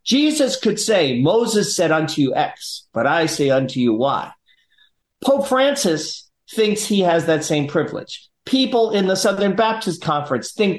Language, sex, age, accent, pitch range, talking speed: English, male, 40-59, American, 150-215 Hz, 160 wpm